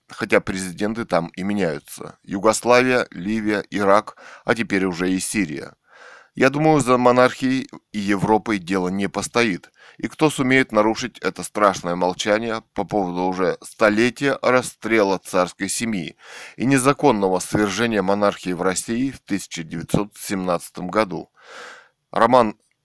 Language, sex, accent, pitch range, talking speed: Russian, male, native, 95-125 Hz, 120 wpm